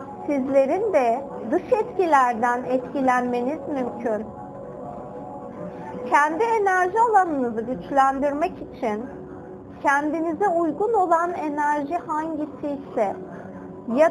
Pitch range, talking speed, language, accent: 255-335 Hz, 70 wpm, Turkish, native